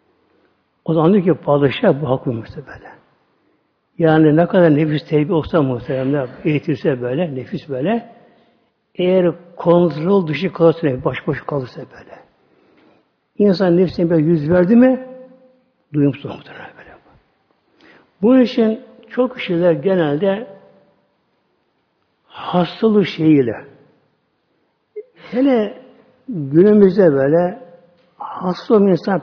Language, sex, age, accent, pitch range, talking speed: Turkish, male, 60-79, native, 160-210 Hz, 95 wpm